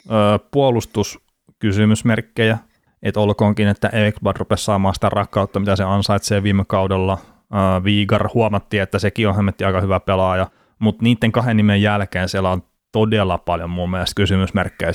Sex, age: male, 30-49